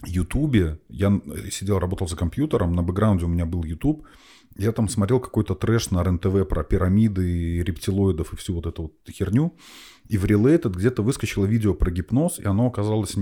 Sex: male